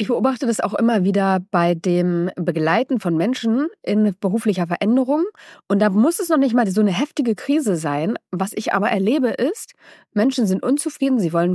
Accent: German